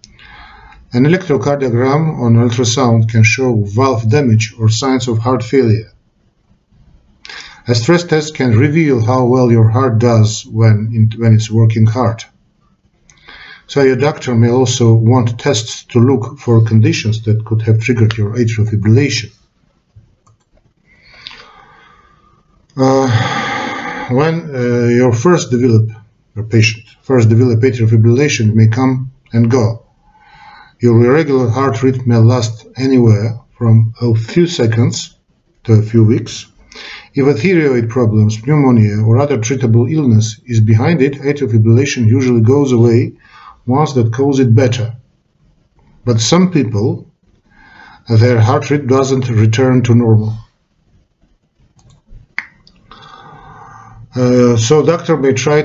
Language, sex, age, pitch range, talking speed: English, male, 50-69, 110-130 Hz, 120 wpm